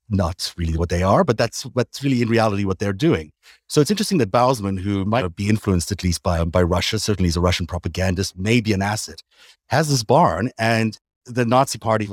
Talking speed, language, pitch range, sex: 220 wpm, English, 95-115 Hz, male